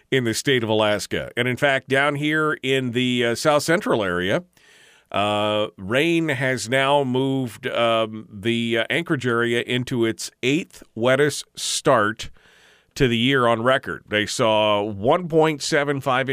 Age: 40-59